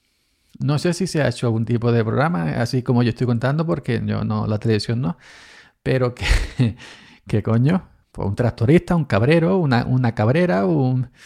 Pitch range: 115-160 Hz